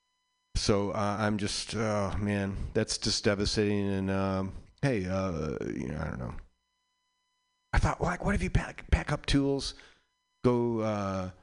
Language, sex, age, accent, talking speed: English, male, 40-59, American, 160 wpm